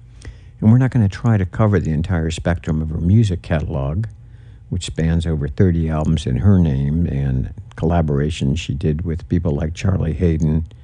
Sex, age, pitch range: male, 60-79, 80-110 Hz